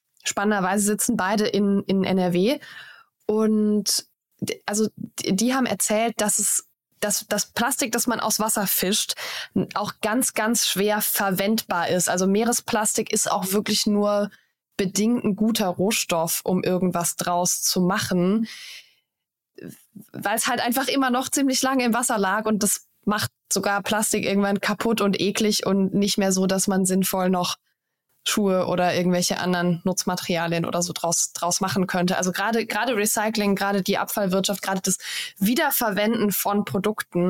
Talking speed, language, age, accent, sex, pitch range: 150 wpm, German, 20-39, German, female, 180-215 Hz